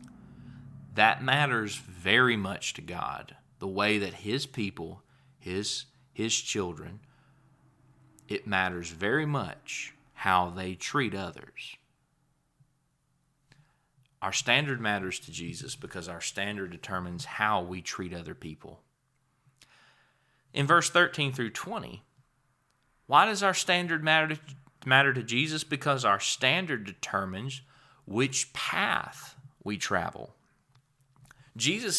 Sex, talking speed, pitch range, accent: male, 110 wpm, 100-140 Hz, American